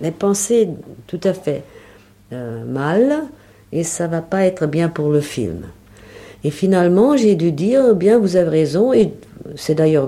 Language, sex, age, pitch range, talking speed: French, female, 50-69, 135-205 Hz, 175 wpm